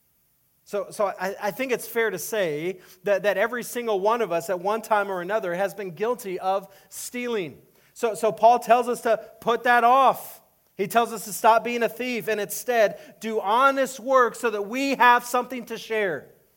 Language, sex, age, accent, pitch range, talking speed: English, male, 40-59, American, 170-225 Hz, 200 wpm